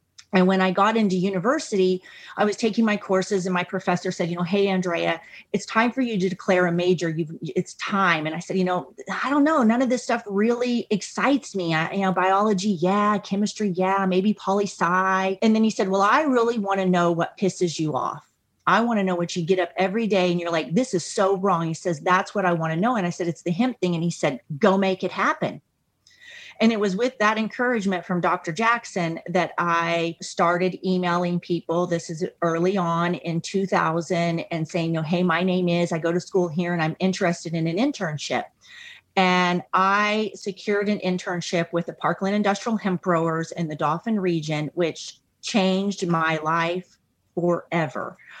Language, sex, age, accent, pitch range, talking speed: English, female, 30-49, American, 170-205 Hz, 205 wpm